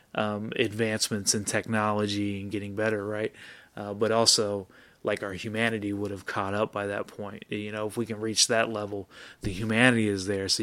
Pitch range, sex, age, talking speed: 105-120 Hz, male, 20-39, 190 wpm